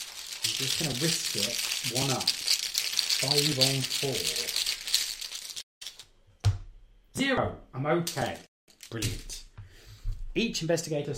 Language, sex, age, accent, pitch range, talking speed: English, male, 30-49, British, 110-155 Hz, 85 wpm